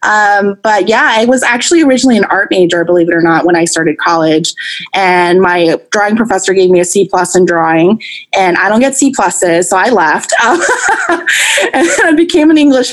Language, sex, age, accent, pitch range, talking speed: English, female, 20-39, American, 180-265 Hz, 210 wpm